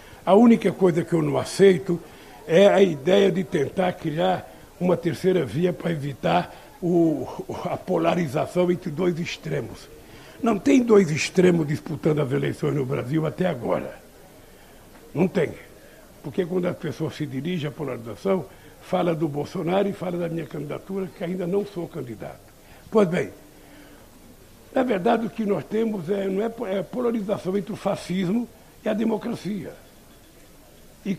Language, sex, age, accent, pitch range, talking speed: Portuguese, male, 60-79, Brazilian, 165-205 Hz, 145 wpm